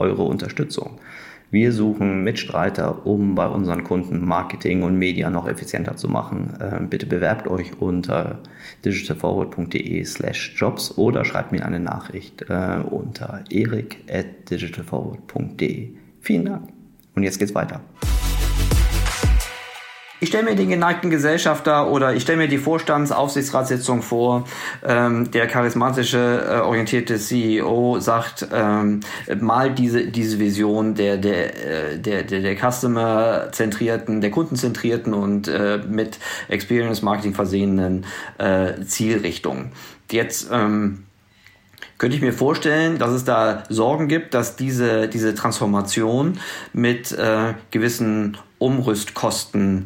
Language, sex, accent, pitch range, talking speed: German, male, German, 100-125 Hz, 115 wpm